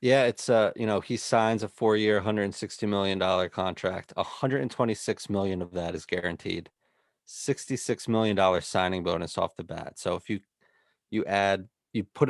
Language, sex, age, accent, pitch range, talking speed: English, male, 30-49, American, 90-105 Hz, 160 wpm